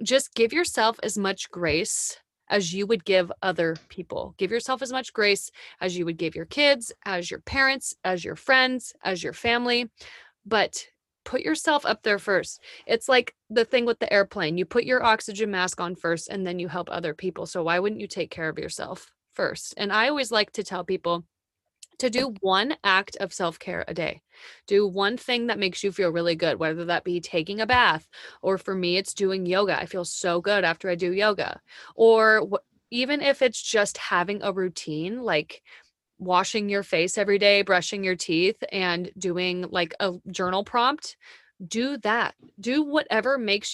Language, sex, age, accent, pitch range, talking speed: English, female, 30-49, American, 180-235 Hz, 190 wpm